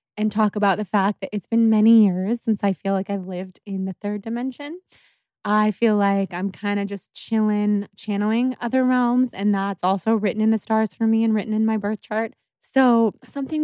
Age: 20-39